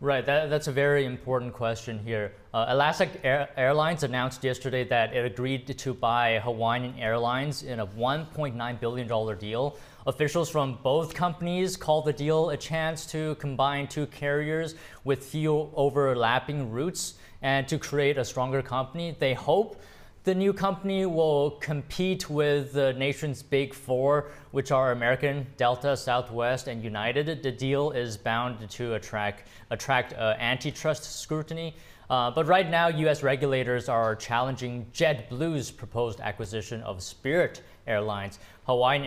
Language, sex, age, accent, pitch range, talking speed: English, male, 20-39, American, 115-150 Hz, 145 wpm